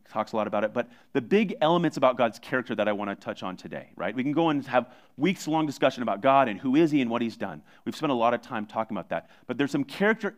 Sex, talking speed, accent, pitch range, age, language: male, 290 wpm, American, 105-135 Hz, 30-49, English